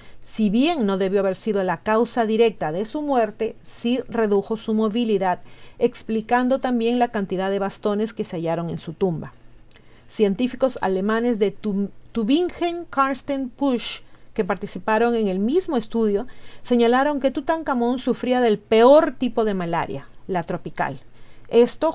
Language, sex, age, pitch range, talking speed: Spanish, female, 40-59, 195-240 Hz, 135 wpm